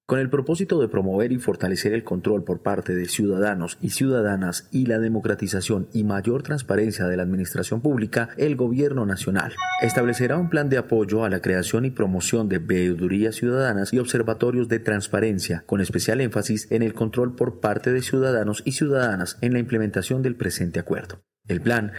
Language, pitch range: Spanish, 100-130 Hz